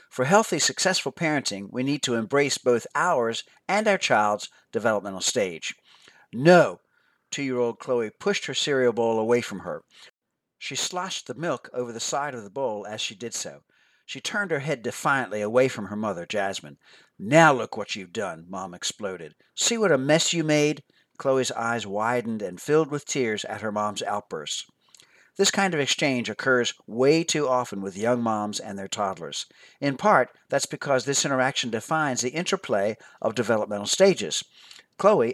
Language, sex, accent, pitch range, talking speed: English, male, American, 110-150 Hz, 170 wpm